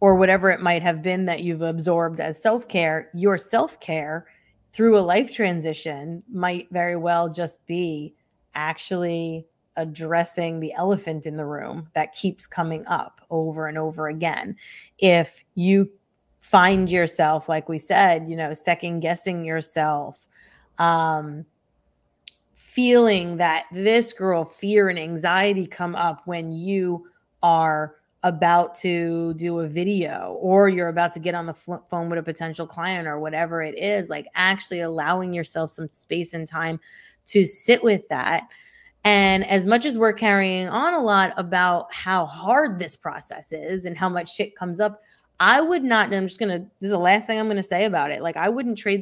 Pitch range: 160-195 Hz